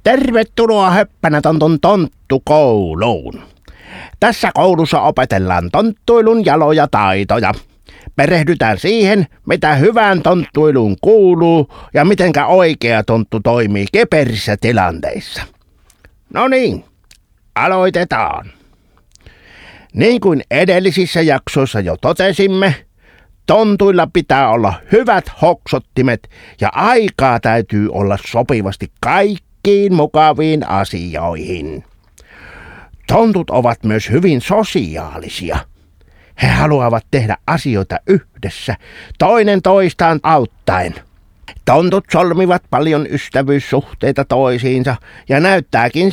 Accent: native